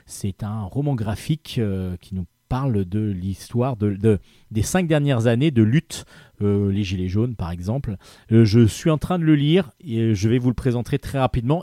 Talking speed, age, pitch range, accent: 205 wpm, 40-59, 105-140 Hz, French